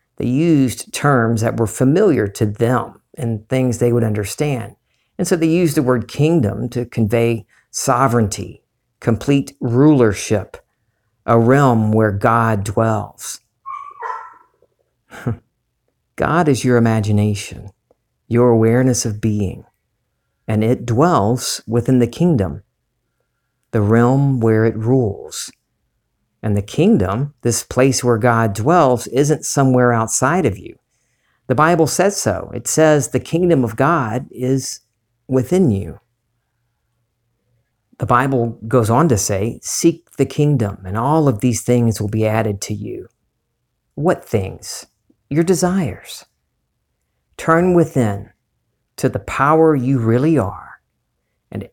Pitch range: 110-140 Hz